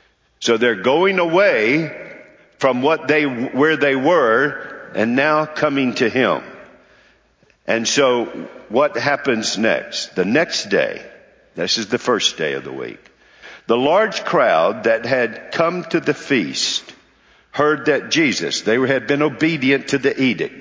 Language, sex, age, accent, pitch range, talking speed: English, male, 60-79, American, 130-175 Hz, 145 wpm